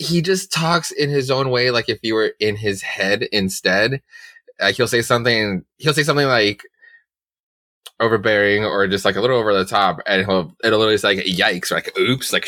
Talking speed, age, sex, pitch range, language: 205 wpm, 20-39, male, 100-135 Hz, English